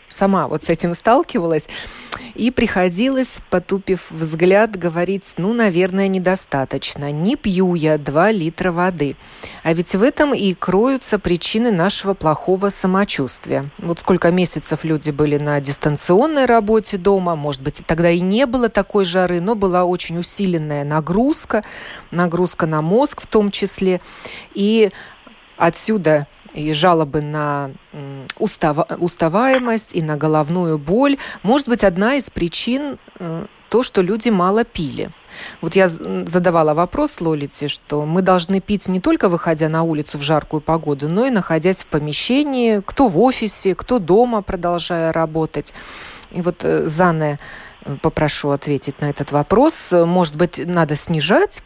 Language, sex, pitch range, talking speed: Russian, female, 155-205 Hz, 140 wpm